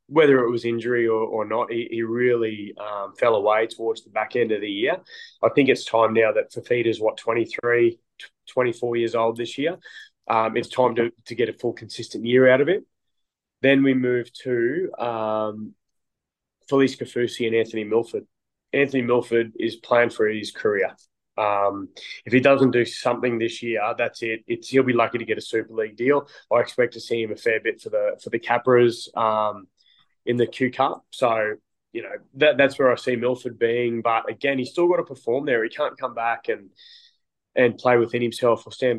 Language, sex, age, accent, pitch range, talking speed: English, male, 20-39, Australian, 115-135 Hz, 200 wpm